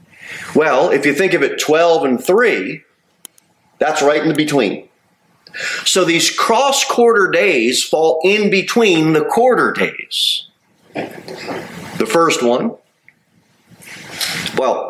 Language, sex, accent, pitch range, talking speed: English, male, American, 130-215 Hz, 115 wpm